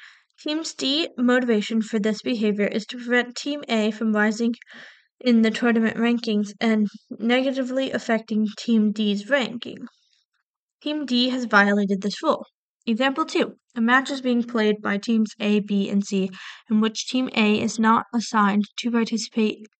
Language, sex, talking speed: English, female, 155 wpm